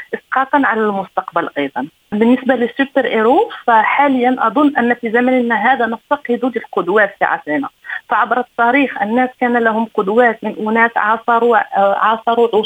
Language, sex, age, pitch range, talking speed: Arabic, female, 30-49, 225-265 Hz, 130 wpm